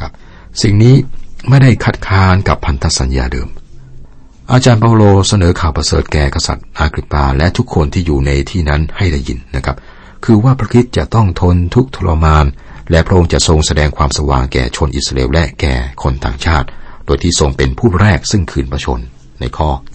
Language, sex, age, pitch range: Thai, male, 60-79, 70-95 Hz